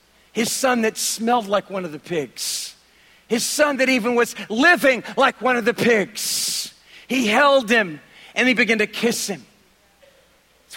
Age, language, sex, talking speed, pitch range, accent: 50-69, English, male, 165 wpm, 155-210 Hz, American